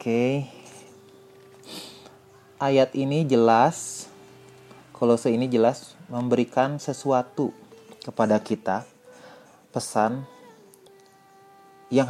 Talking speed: 70 wpm